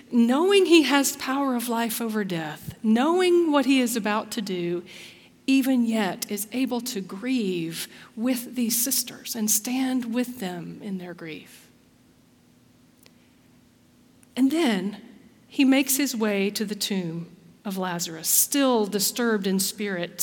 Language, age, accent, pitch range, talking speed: English, 40-59, American, 195-255 Hz, 135 wpm